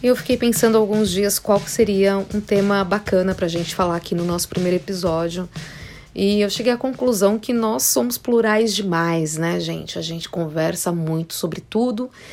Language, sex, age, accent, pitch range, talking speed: Portuguese, female, 20-39, Brazilian, 170-215 Hz, 180 wpm